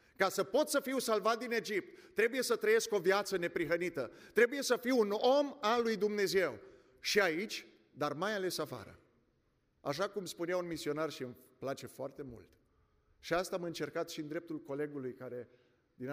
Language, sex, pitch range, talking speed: Romanian, male, 135-170 Hz, 180 wpm